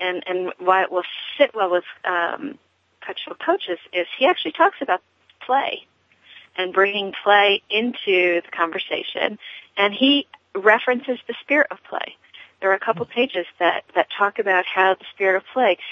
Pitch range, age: 170-195 Hz, 40-59